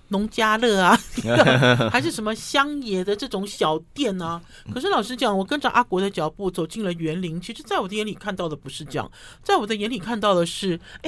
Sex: male